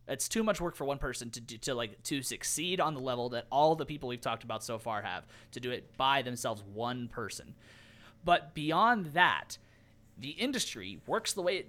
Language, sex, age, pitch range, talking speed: English, male, 30-49, 120-180 Hz, 215 wpm